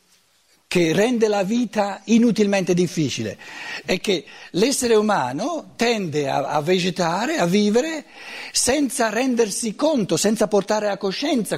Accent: native